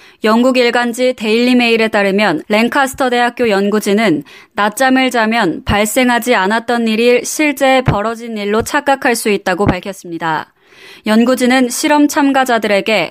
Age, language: 20-39, Korean